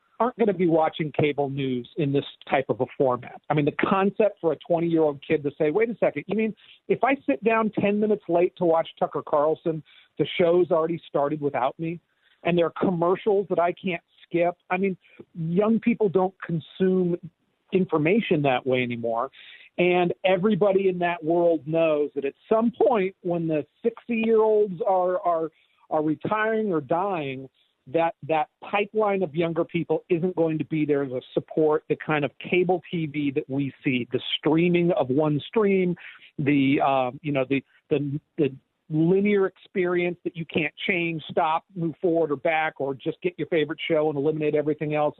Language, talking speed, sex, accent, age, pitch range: English, 180 wpm, male, American, 50-69, 150-195 Hz